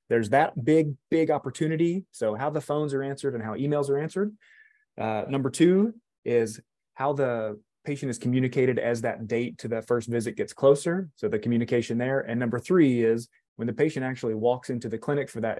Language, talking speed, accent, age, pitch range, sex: English, 200 wpm, American, 20-39, 115-140 Hz, male